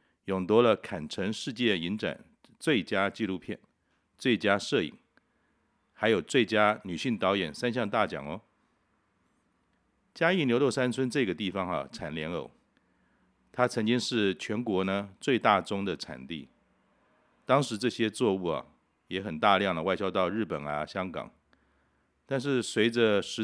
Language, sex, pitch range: Chinese, male, 80-115 Hz